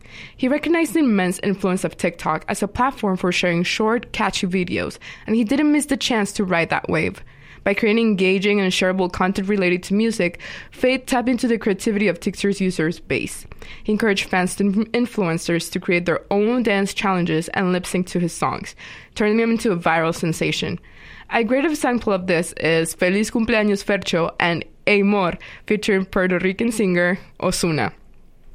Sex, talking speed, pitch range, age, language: female, 175 wpm, 180-225 Hz, 20-39, English